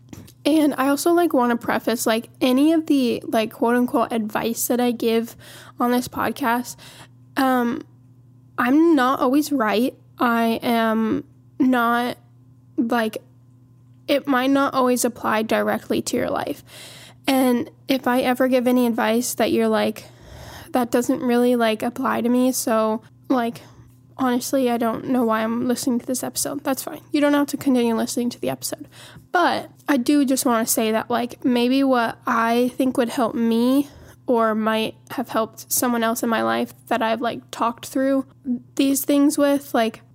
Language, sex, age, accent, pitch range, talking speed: English, female, 10-29, American, 225-265 Hz, 165 wpm